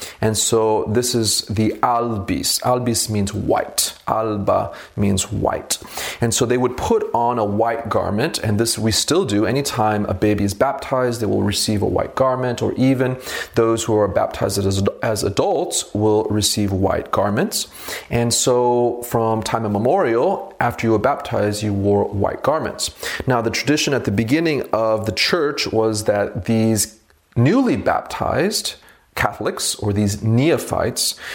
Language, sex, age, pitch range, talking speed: English, male, 30-49, 105-120 Hz, 155 wpm